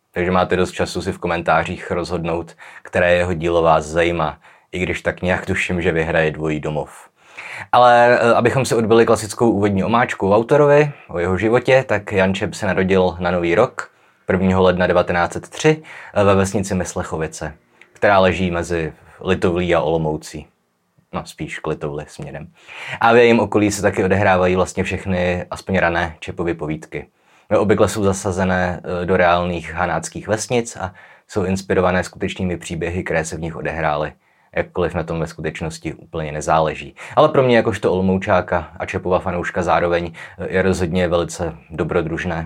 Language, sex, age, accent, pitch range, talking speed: Czech, male, 20-39, native, 85-95 Hz, 150 wpm